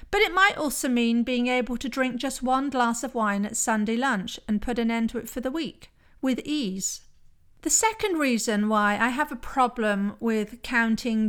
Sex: female